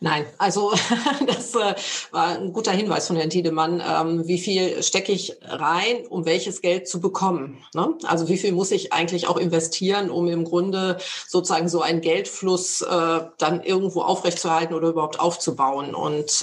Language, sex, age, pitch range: German, female, 40-59, 165-185 Hz